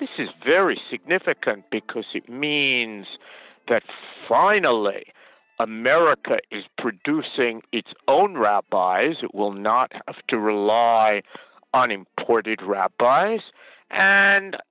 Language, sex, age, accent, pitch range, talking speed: English, male, 50-69, American, 105-165 Hz, 100 wpm